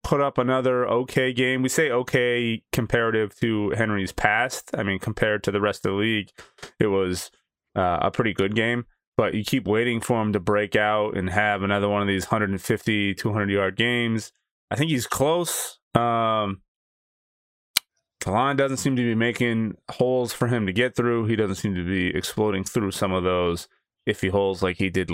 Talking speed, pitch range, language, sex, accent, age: 185 wpm, 100-120 Hz, English, male, American, 20-39